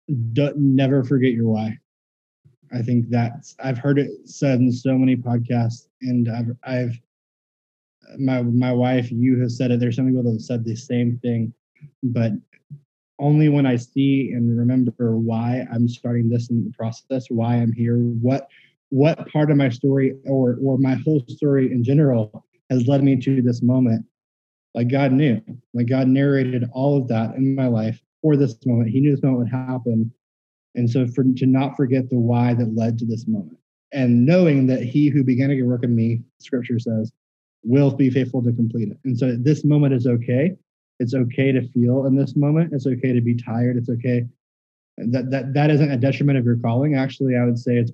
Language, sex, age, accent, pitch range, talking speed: English, male, 20-39, American, 120-135 Hz, 200 wpm